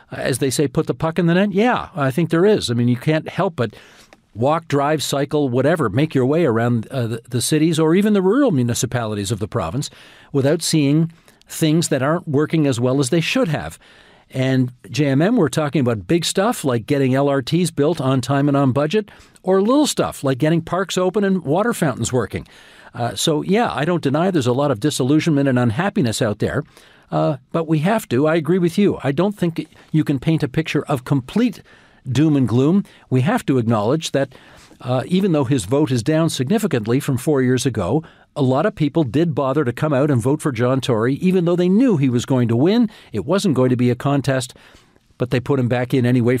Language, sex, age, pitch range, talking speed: English, male, 50-69, 130-165 Hz, 220 wpm